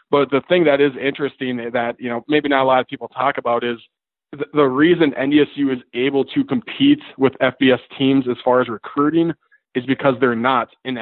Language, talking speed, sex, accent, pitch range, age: English, 200 wpm, male, American, 120-135 Hz, 20-39